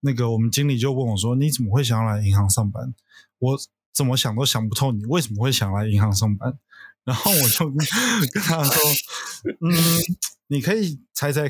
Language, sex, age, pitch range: Chinese, male, 20-39, 120-155 Hz